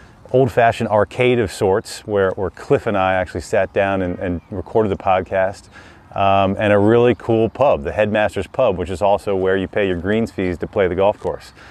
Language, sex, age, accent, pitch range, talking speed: English, male, 30-49, American, 95-105 Hz, 205 wpm